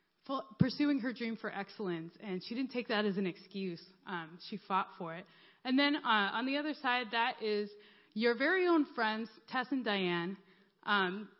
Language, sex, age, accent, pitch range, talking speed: English, female, 20-39, American, 190-270 Hz, 190 wpm